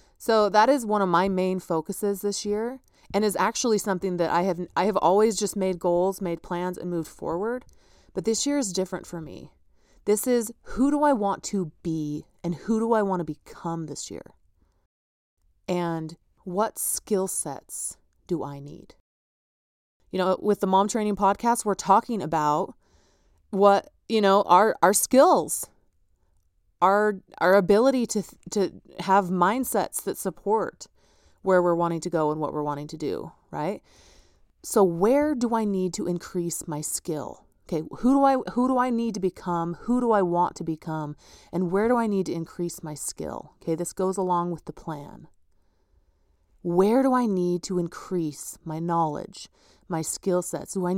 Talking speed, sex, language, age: 175 wpm, female, English, 30-49